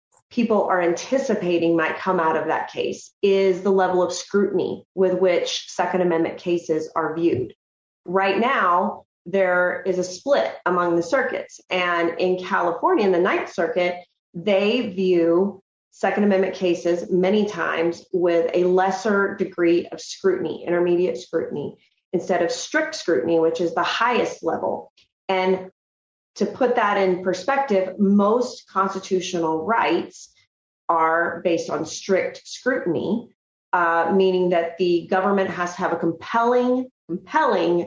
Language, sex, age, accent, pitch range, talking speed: English, female, 30-49, American, 170-195 Hz, 135 wpm